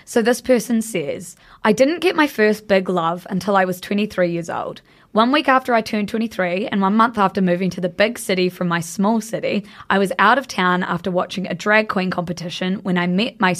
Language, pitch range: English, 185-220 Hz